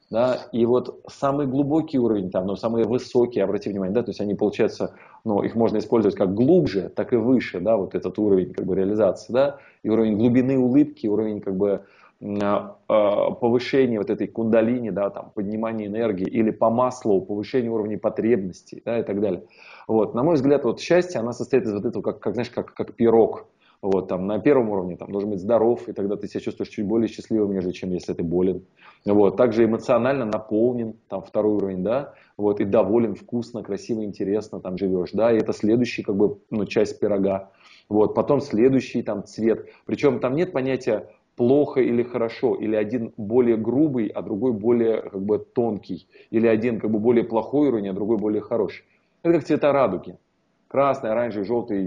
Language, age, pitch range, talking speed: Russian, 20-39, 100-120 Hz, 185 wpm